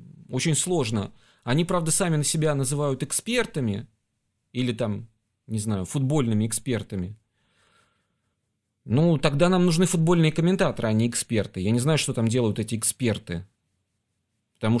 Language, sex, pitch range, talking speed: Russian, male, 110-150 Hz, 135 wpm